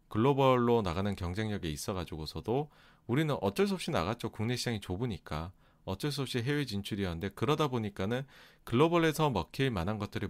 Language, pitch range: Korean, 95-135 Hz